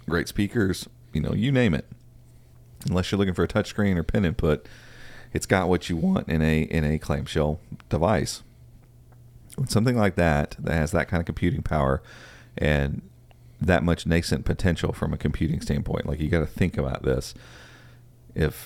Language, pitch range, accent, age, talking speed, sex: English, 75-95 Hz, American, 40-59, 175 wpm, male